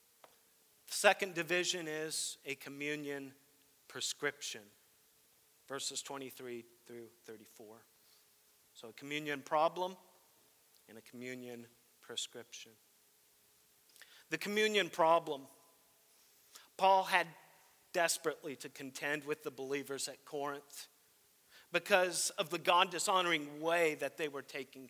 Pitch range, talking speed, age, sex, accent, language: 140-185 Hz, 100 wpm, 40-59, male, American, English